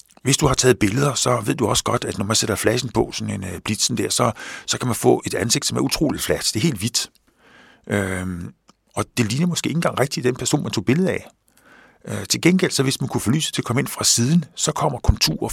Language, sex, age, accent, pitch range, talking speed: Danish, male, 50-69, native, 100-135 Hz, 265 wpm